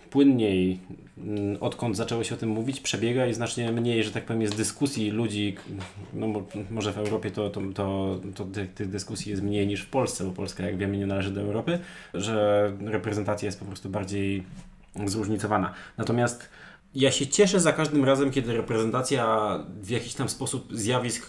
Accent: native